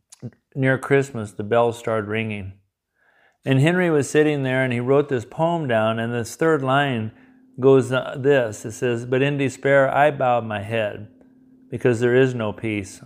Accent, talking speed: American, 170 wpm